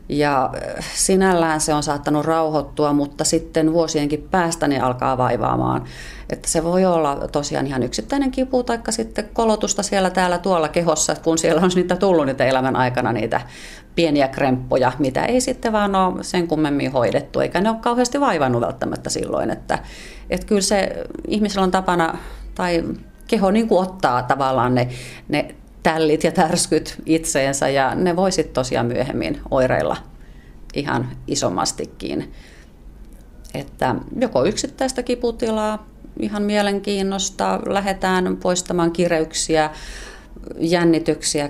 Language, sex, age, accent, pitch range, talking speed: Finnish, female, 30-49, native, 145-185 Hz, 130 wpm